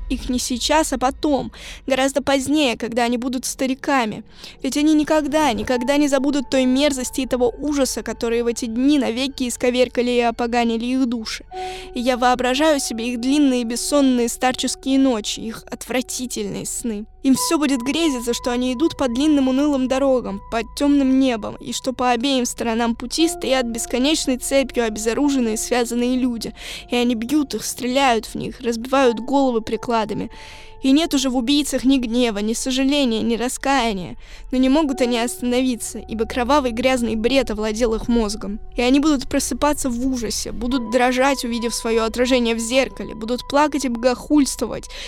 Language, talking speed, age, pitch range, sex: Russian, 160 wpm, 20-39, 235-275 Hz, female